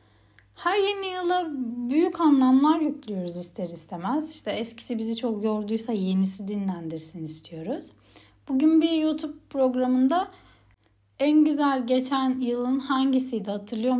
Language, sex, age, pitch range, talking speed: Turkish, female, 60-79, 190-290 Hz, 110 wpm